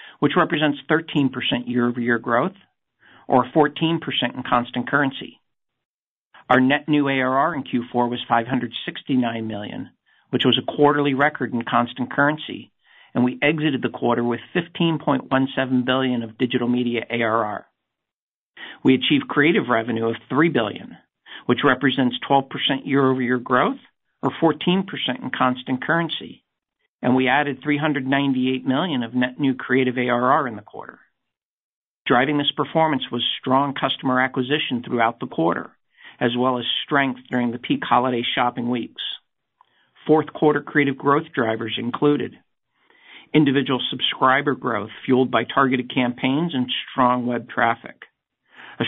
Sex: male